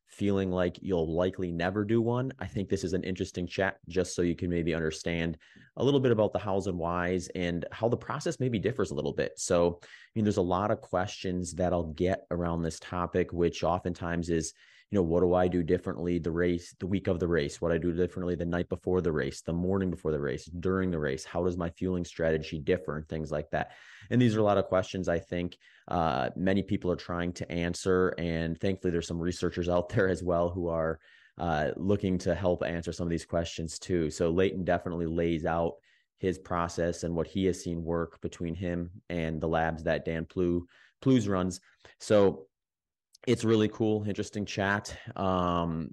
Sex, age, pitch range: male, 30-49, 85-100 Hz